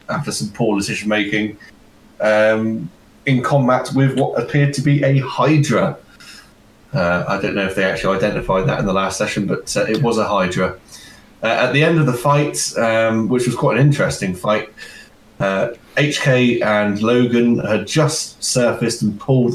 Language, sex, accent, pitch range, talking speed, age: English, male, British, 105-145 Hz, 175 wpm, 20-39